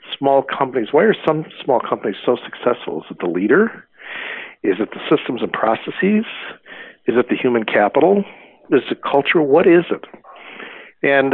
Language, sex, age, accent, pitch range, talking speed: English, male, 60-79, American, 120-175 Hz, 170 wpm